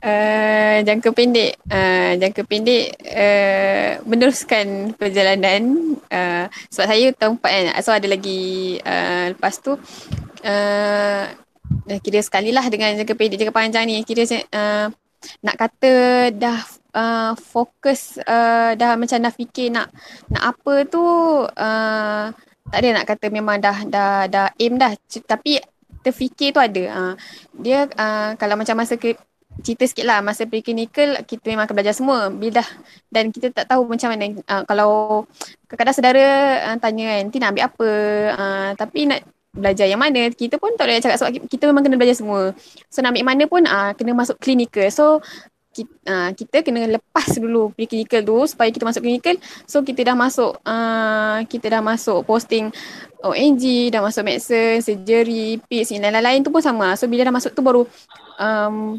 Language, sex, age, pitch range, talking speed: Malay, female, 10-29, 210-250 Hz, 170 wpm